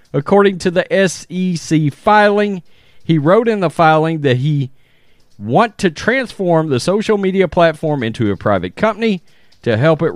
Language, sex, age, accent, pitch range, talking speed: English, male, 40-59, American, 120-175 Hz, 155 wpm